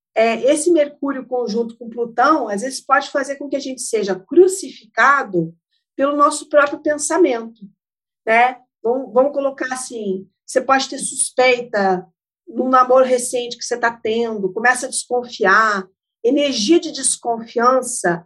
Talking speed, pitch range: 135 wpm, 220-285 Hz